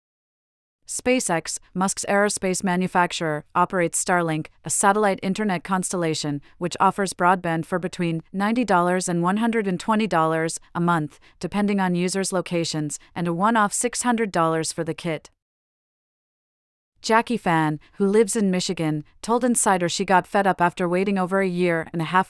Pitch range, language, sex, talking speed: 165-200 Hz, English, female, 135 wpm